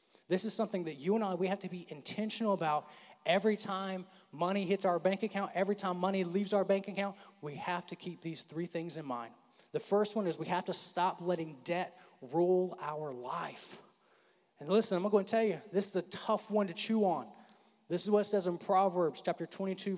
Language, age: English, 30-49